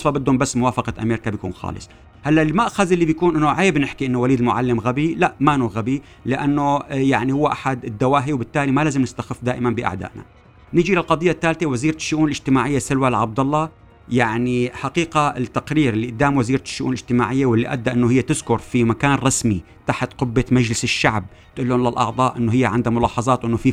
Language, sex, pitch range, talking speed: Arabic, male, 120-145 Hz, 175 wpm